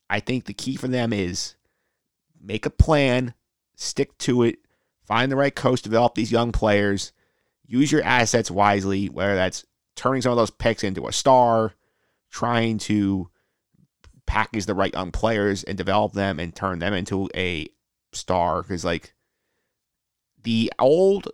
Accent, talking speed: American, 155 wpm